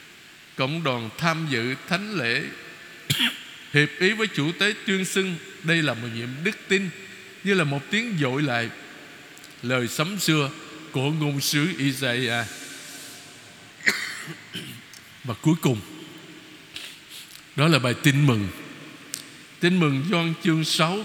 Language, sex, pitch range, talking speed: Vietnamese, male, 130-175 Hz, 130 wpm